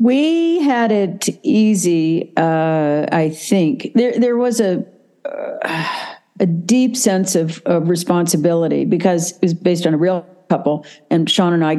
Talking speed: 155 wpm